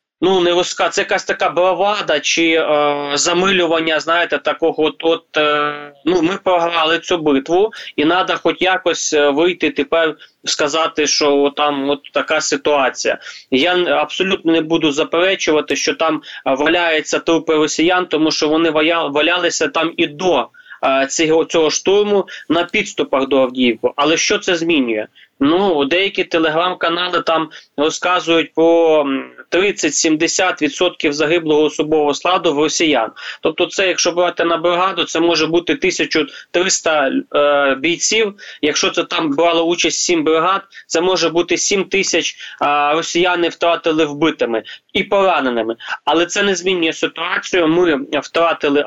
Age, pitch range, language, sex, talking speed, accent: 20-39, 150-180 Hz, Ukrainian, male, 135 wpm, native